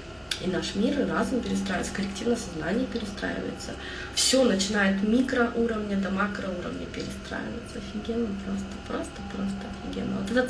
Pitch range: 190-230 Hz